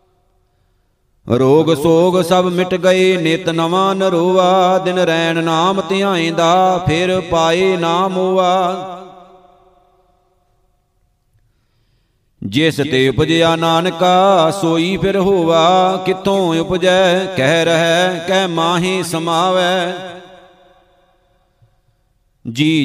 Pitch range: 165-185 Hz